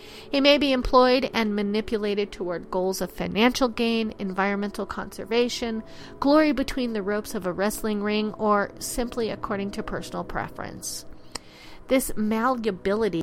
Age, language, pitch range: 40-59, English, 180-245 Hz